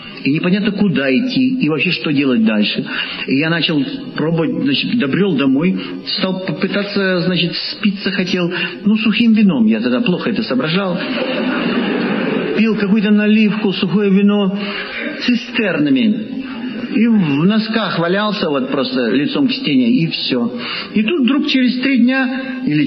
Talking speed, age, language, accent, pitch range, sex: 140 wpm, 50-69, Russian, native, 180-235 Hz, male